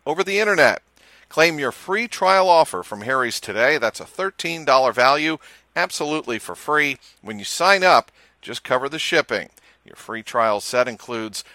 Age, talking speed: 50-69, 160 wpm